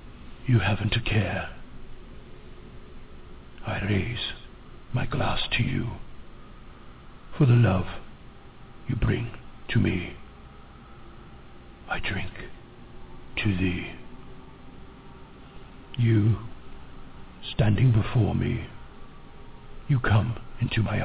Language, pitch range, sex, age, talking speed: English, 90-120 Hz, male, 60-79, 85 wpm